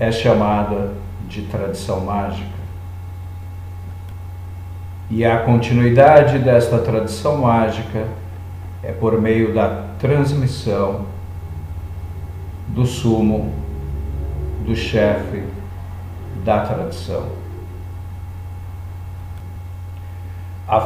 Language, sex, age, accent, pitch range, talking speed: Portuguese, male, 50-69, Brazilian, 90-115 Hz, 65 wpm